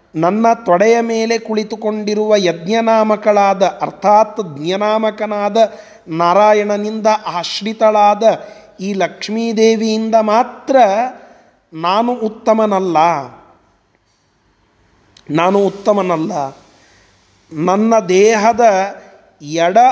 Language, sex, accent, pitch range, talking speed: Kannada, male, native, 175-220 Hz, 55 wpm